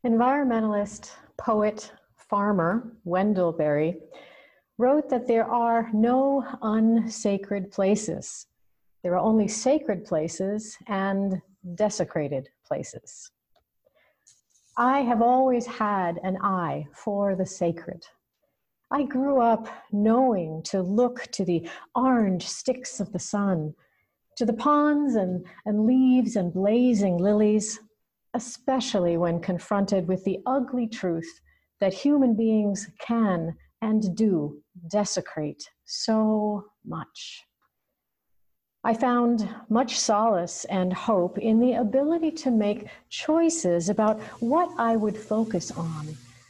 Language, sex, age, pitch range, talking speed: English, female, 50-69, 190-250 Hz, 110 wpm